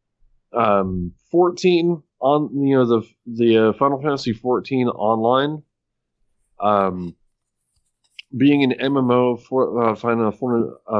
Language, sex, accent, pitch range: English, male, American, 105-130 Hz